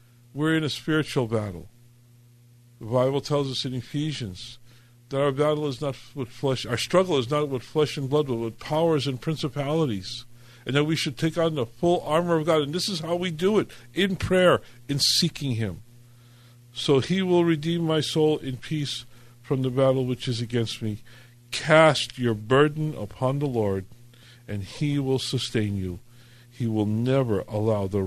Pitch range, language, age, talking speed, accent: 120-145 Hz, English, 50-69, 180 wpm, American